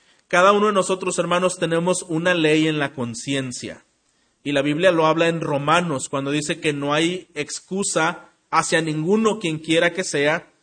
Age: 40-59